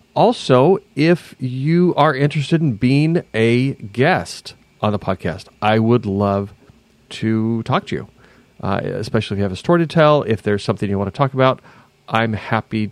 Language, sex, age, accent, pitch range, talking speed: English, male, 40-59, American, 100-130 Hz, 175 wpm